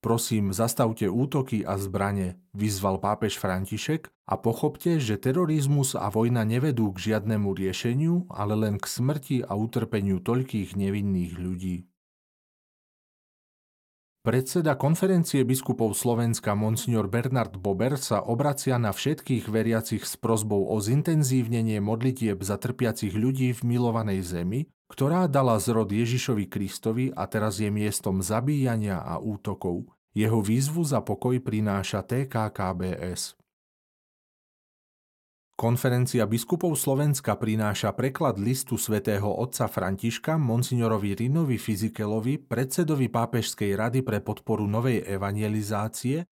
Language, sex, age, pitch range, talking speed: Slovak, male, 40-59, 105-130 Hz, 115 wpm